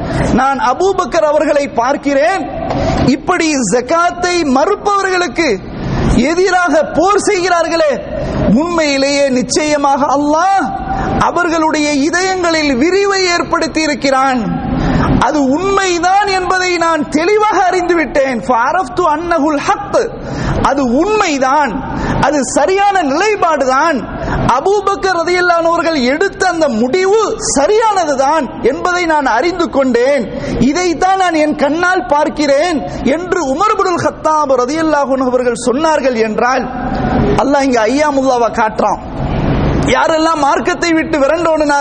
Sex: male